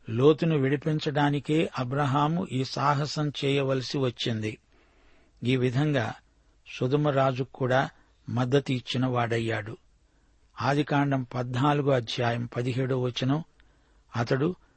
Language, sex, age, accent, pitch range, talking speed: Telugu, male, 60-79, native, 125-145 Hz, 75 wpm